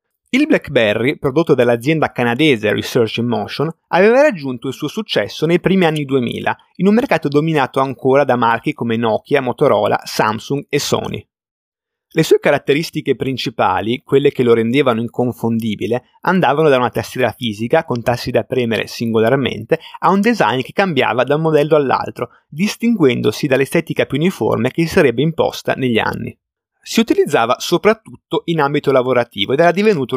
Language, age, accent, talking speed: Italian, 30-49, native, 155 wpm